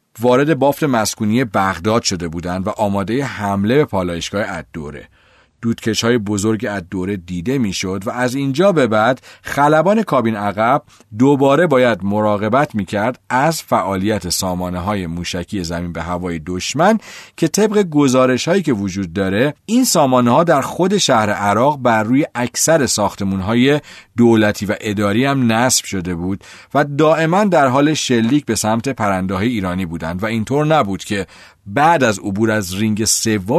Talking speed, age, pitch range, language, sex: 155 wpm, 40-59, 100-130 Hz, Persian, male